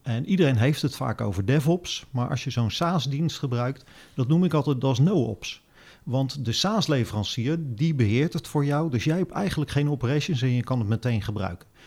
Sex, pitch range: male, 120-150 Hz